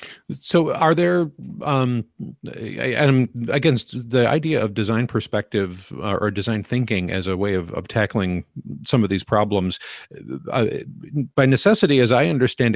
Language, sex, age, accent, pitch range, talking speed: English, male, 50-69, American, 95-125 Hz, 150 wpm